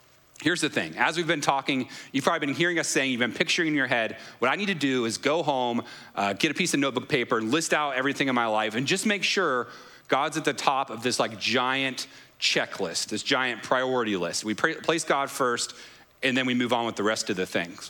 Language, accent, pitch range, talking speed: English, American, 125-165 Hz, 240 wpm